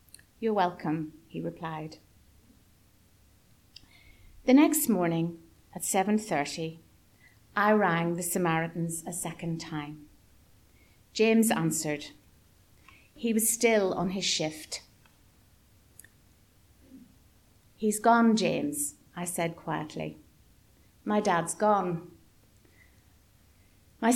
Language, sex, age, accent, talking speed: English, female, 50-69, British, 85 wpm